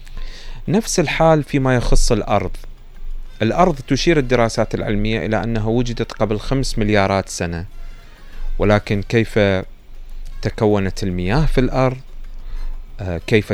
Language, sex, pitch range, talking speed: Arabic, male, 100-130 Hz, 100 wpm